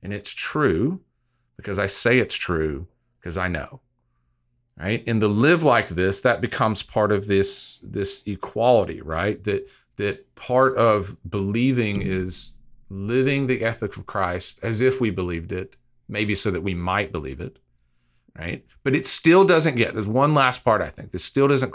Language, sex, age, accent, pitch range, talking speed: English, male, 40-59, American, 95-125 Hz, 175 wpm